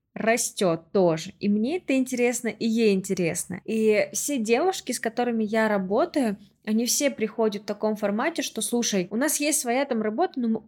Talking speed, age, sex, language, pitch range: 180 wpm, 20-39, female, Russian, 200-245 Hz